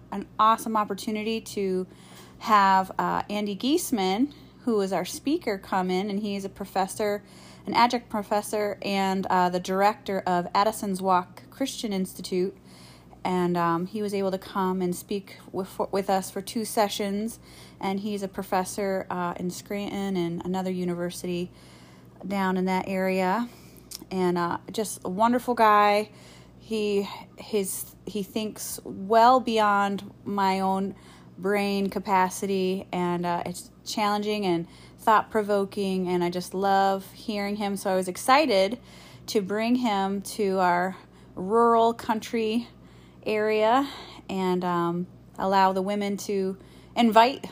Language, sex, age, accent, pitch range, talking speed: English, female, 30-49, American, 185-215 Hz, 135 wpm